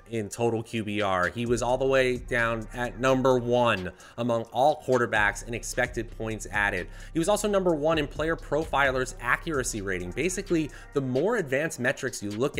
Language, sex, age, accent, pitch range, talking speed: English, male, 30-49, American, 105-150 Hz, 170 wpm